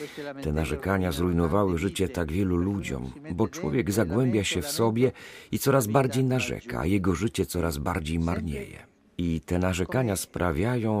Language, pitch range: Polish, 90-125 Hz